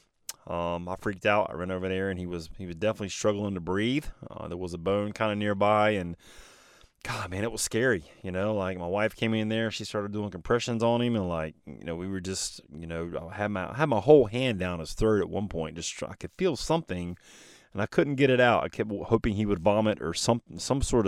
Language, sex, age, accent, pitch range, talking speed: English, male, 30-49, American, 90-115 Hz, 255 wpm